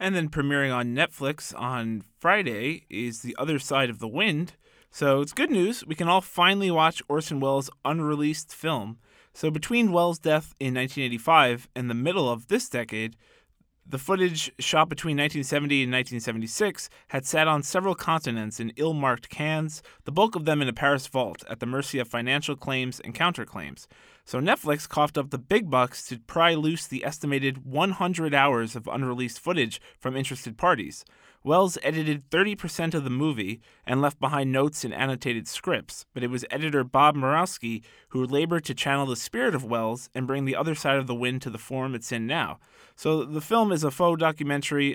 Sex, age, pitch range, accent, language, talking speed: male, 20-39, 125-155 Hz, American, English, 185 wpm